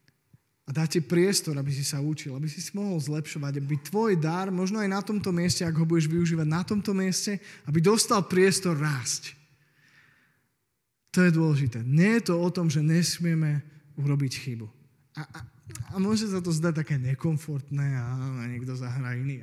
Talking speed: 175 wpm